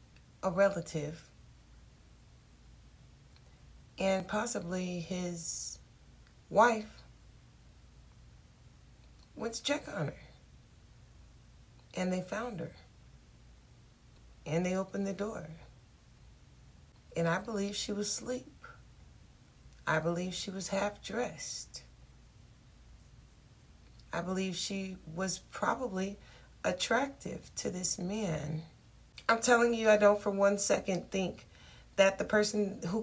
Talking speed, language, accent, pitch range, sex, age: 100 wpm, English, American, 170-215 Hz, female, 40-59